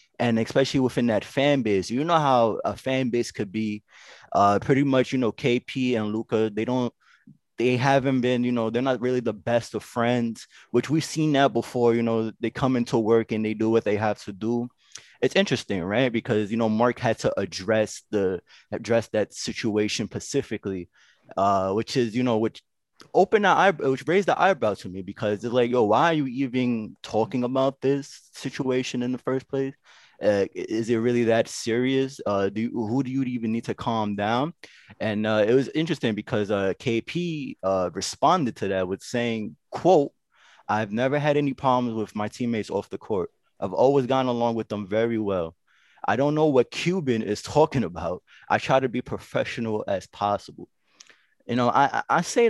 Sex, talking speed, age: male, 195 wpm, 20-39